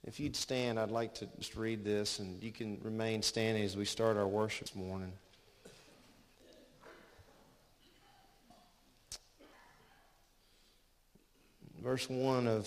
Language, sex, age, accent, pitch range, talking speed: English, male, 40-59, American, 100-120 Hz, 115 wpm